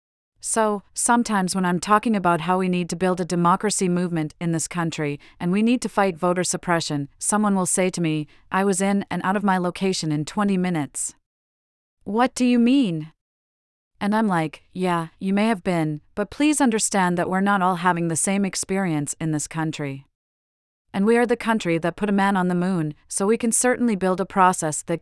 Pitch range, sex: 165-200 Hz, female